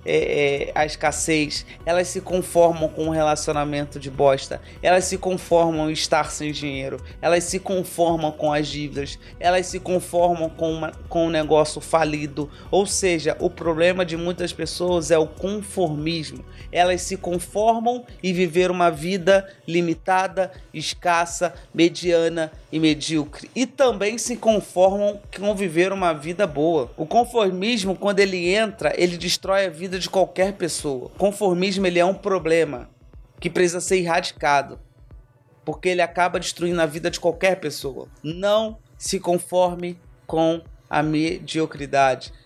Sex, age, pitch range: male, 30-49, 155-190 Hz